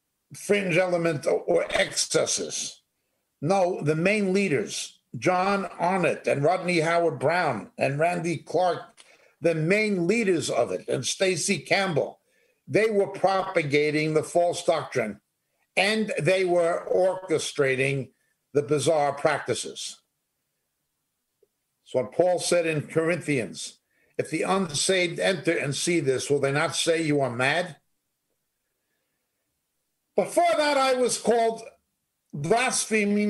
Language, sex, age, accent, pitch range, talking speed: English, male, 60-79, American, 155-215 Hz, 115 wpm